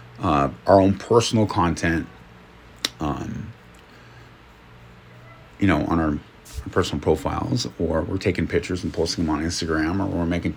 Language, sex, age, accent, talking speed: English, male, 40-59, American, 135 wpm